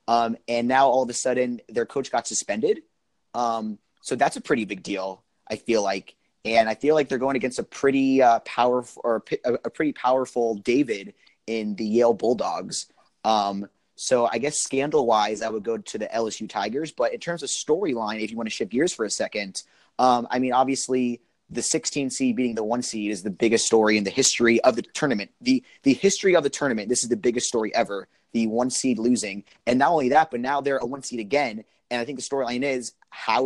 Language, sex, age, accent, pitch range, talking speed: English, male, 30-49, American, 115-130 Hz, 220 wpm